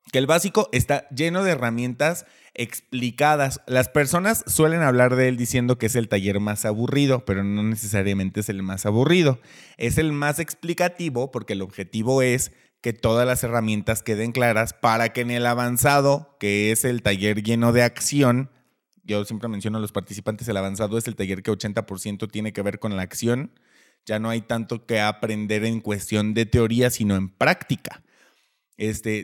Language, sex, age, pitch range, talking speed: Spanish, male, 30-49, 105-135 Hz, 180 wpm